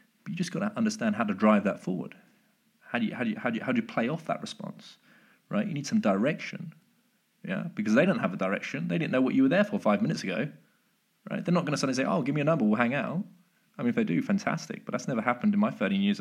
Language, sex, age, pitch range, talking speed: English, male, 20-39, 140-215 Hz, 295 wpm